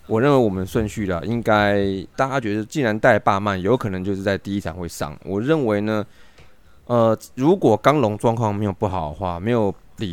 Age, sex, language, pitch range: 20-39, male, Chinese, 90-110 Hz